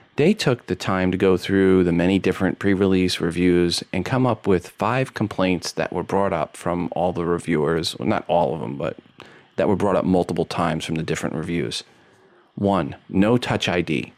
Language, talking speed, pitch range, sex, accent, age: English, 190 wpm, 85-110 Hz, male, American, 30-49